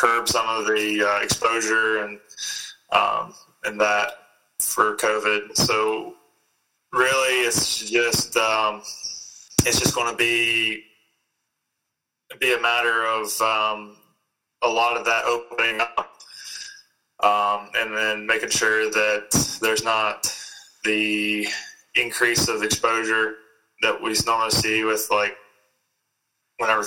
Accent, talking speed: American, 115 wpm